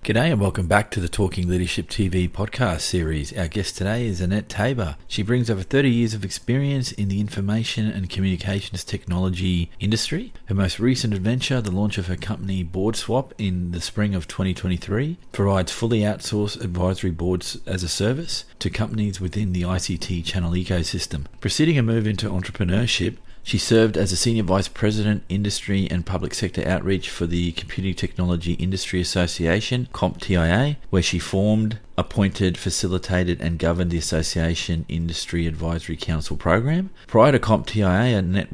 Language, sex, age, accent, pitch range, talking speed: English, male, 40-59, Australian, 85-105 Hz, 160 wpm